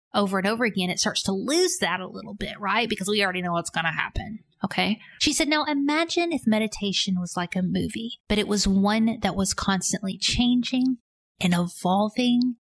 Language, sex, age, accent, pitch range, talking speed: English, female, 20-39, American, 195-250 Hz, 200 wpm